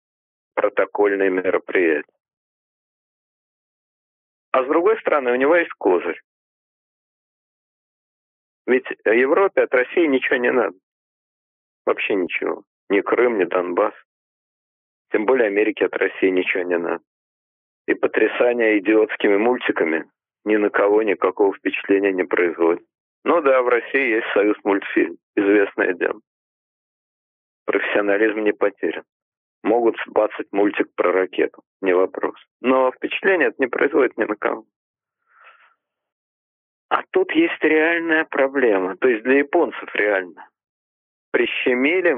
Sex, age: male, 40-59